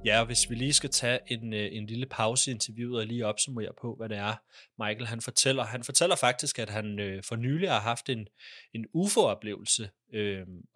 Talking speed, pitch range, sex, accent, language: 200 wpm, 110-135 Hz, male, native, Danish